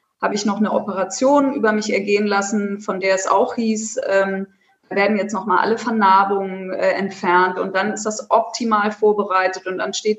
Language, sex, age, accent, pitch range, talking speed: German, female, 20-39, German, 195-225 Hz, 190 wpm